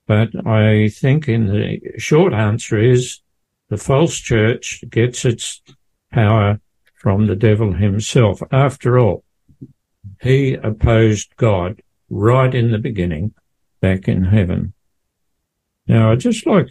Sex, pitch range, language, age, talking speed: male, 110-135 Hz, English, 60-79, 120 wpm